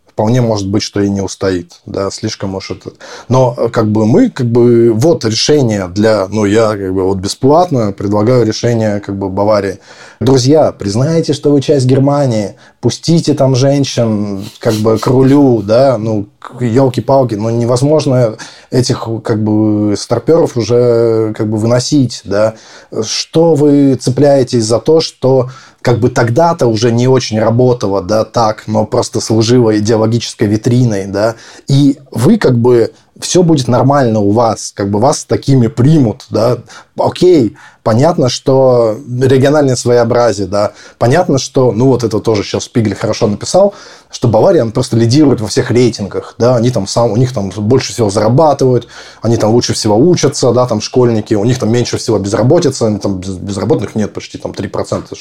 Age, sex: 20-39, male